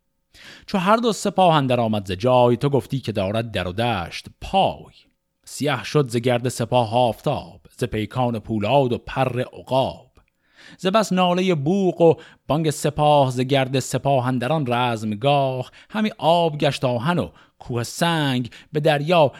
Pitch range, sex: 115-150 Hz, male